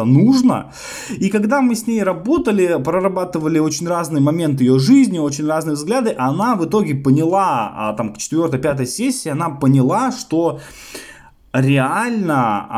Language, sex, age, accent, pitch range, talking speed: Russian, male, 20-39, native, 135-195 Hz, 130 wpm